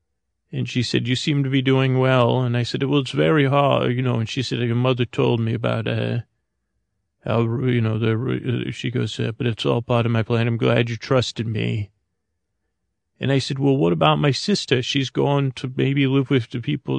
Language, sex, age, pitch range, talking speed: English, male, 40-59, 110-130 Hz, 220 wpm